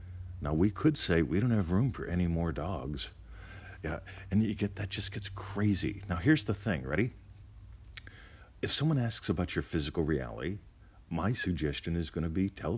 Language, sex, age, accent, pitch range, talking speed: English, male, 50-69, American, 75-100 Hz, 185 wpm